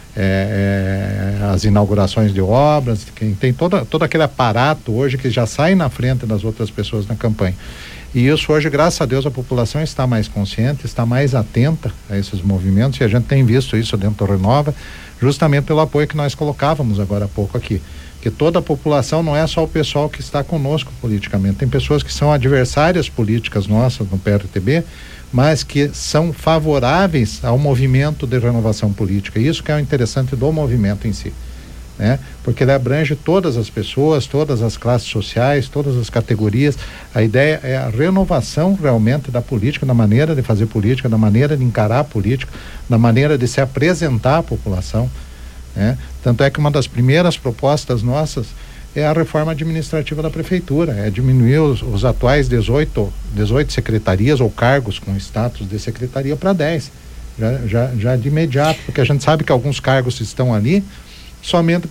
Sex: male